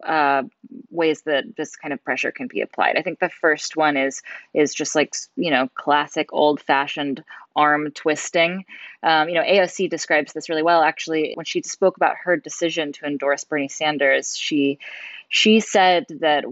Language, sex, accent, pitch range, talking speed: English, female, American, 145-170 Hz, 180 wpm